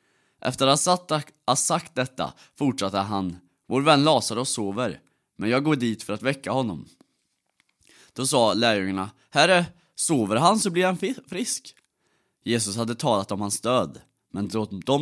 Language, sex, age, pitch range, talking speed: Swedish, male, 30-49, 105-155 Hz, 150 wpm